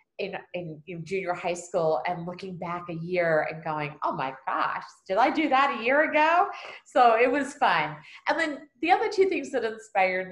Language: English